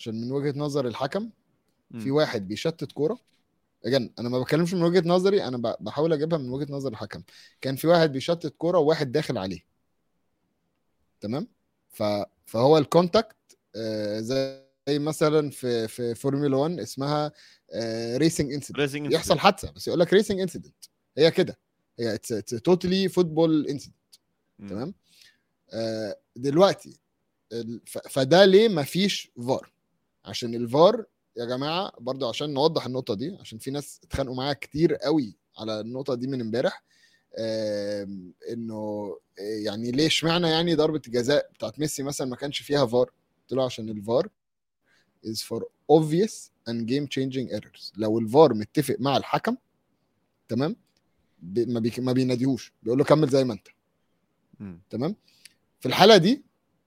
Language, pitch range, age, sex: Arabic, 115-160 Hz, 30-49, male